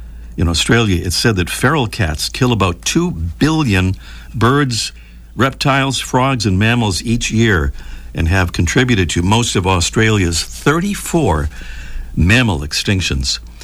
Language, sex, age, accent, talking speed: English, male, 60-79, American, 125 wpm